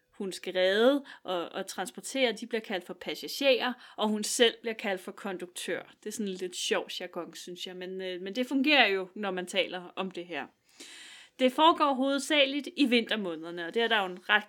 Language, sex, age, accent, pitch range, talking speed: Danish, female, 30-49, native, 180-225 Hz, 210 wpm